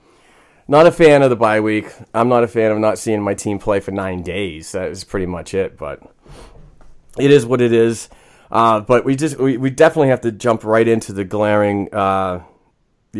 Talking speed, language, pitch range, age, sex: 210 wpm, English, 95-115 Hz, 30-49, male